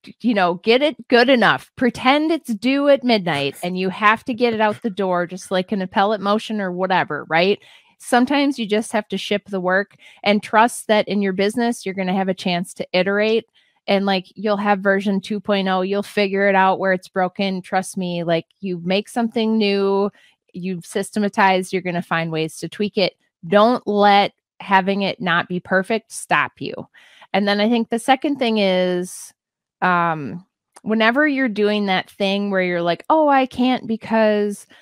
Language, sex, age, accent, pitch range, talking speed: English, female, 20-39, American, 185-225 Hz, 190 wpm